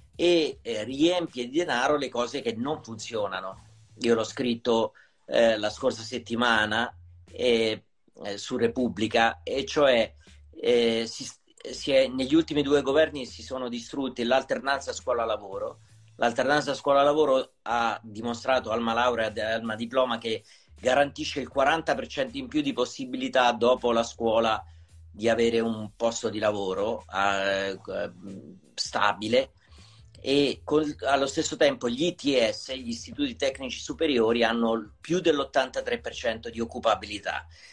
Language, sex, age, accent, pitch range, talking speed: Italian, male, 40-59, native, 110-150 Hz, 120 wpm